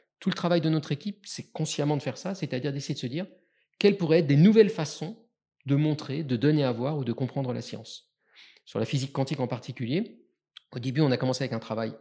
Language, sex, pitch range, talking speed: French, male, 120-165 Hz, 235 wpm